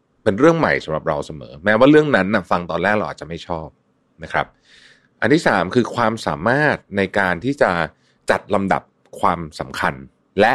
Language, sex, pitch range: Thai, male, 80-120 Hz